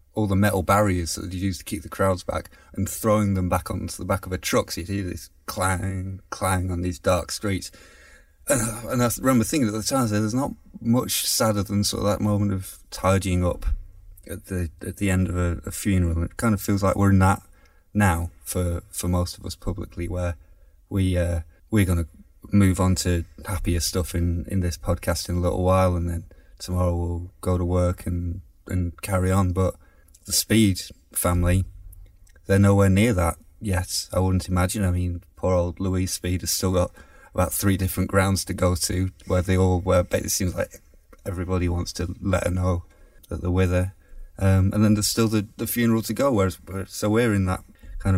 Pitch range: 85-100 Hz